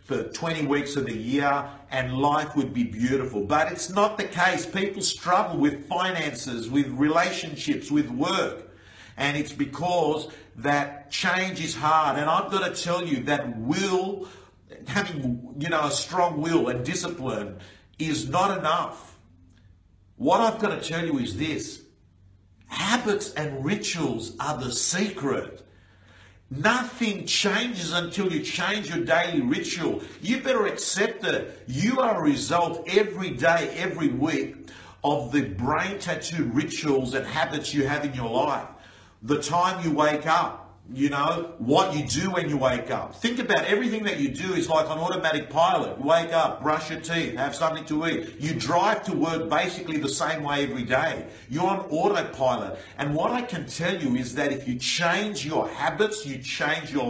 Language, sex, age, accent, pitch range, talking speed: English, male, 50-69, Australian, 135-180 Hz, 165 wpm